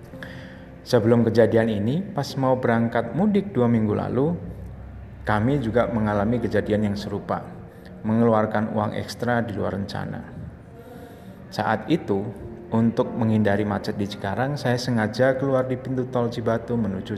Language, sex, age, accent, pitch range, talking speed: Indonesian, male, 30-49, native, 105-120 Hz, 130 wpm